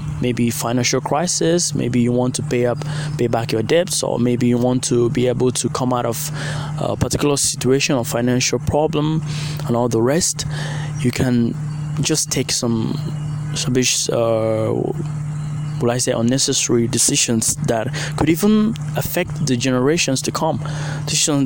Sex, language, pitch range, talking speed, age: male, English, 125-150 Hz, 150 wpm, 20-39